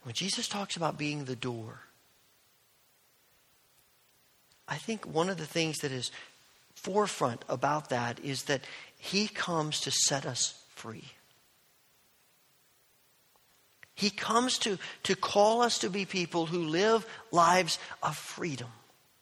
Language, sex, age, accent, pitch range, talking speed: English, male, 50-69, American, 150-210 Hz, 125 wpm